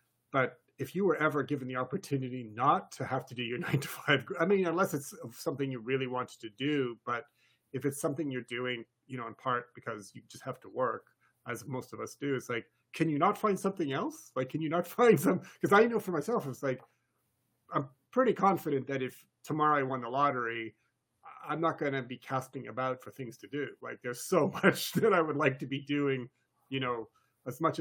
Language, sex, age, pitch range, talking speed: English, male, 30-49, 125-155 Hz, 225 wpm